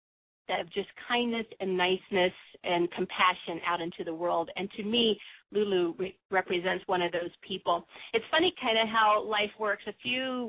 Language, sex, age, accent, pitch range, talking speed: English, female, 40-59, American, 185-215 Hz, 170 wpm